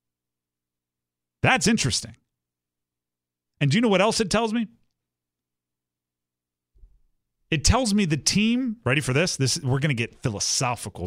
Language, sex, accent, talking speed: English, male, American, 135 wpm